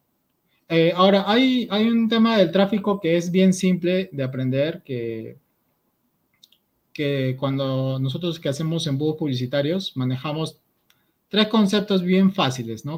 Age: 30-49